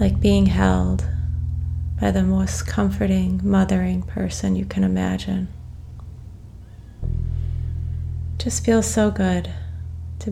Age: 30-49